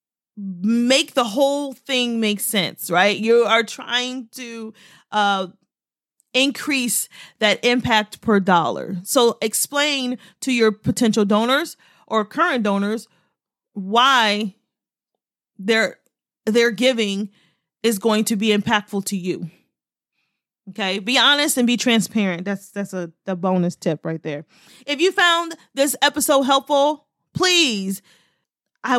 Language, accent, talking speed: English, American, 120 wpm